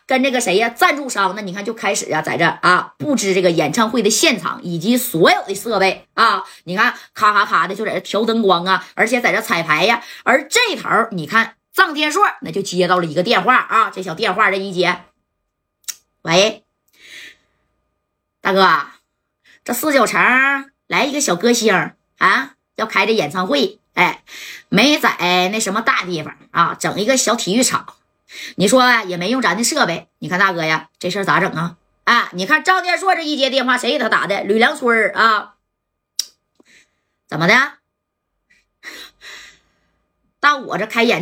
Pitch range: 185-265 Hz